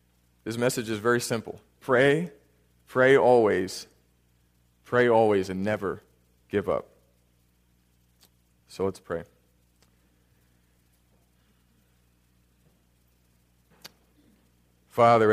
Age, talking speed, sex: 30-49, 70 wpm, male